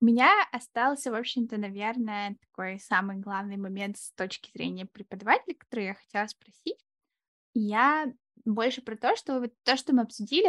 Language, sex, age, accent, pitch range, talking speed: Russian, female, 10-29, native, 210-245 Hz, 160 wpm